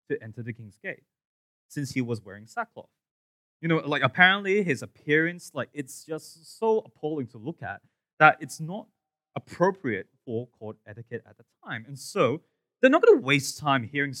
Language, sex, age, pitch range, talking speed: English, male, 20-39, 110-160 Hz, 180 wpm